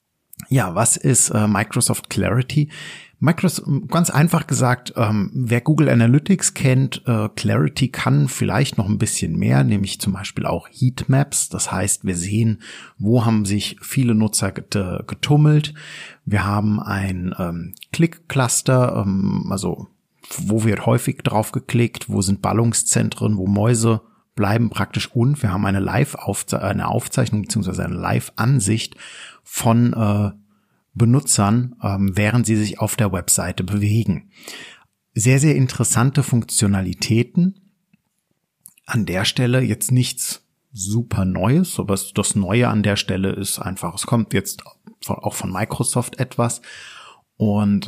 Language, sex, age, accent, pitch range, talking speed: German, male, 50-69, German, 105-130 Hz, 135 wpm